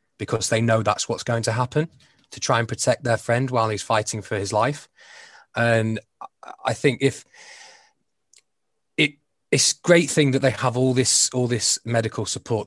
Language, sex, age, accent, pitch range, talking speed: English, male, 20-39, British, 105-130 Hz, 175 wpm